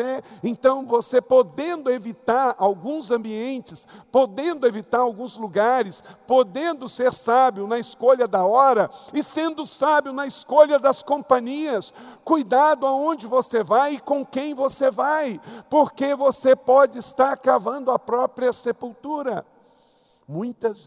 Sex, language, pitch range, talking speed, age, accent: male, Portuguese, 170-250 Hz, 120 wpm, 50-69, Brazilian